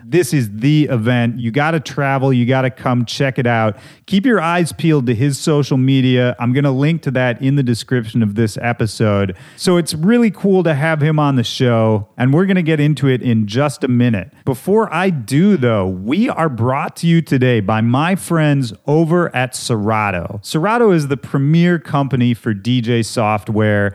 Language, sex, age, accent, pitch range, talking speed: English, male, 30-49, American, 115-150 Hz, 200 wpm